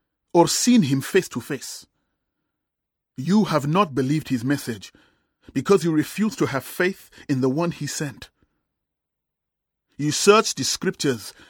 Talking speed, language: 140 wpm, English